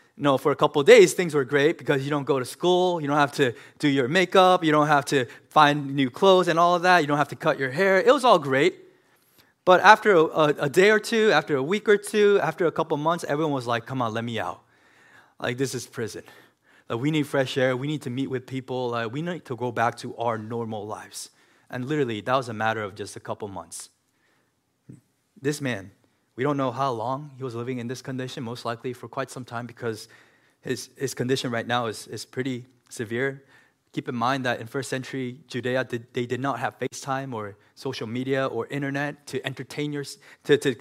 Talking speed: 230 wpm